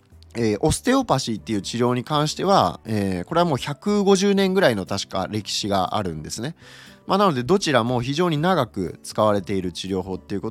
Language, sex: Japanese, male